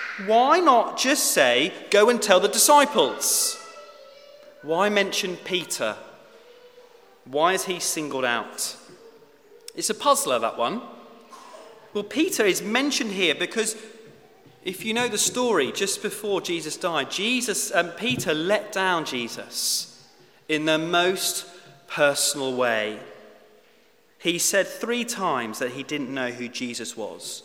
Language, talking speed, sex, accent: English, 130 wpm, male, British